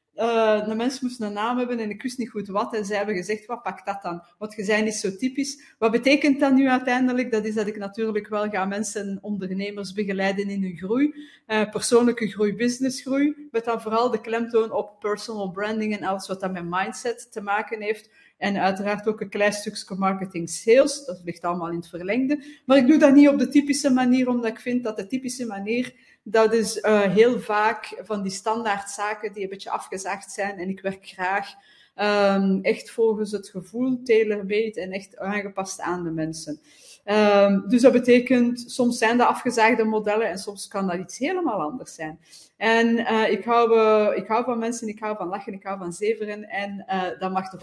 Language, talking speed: Dutch, 205 wpm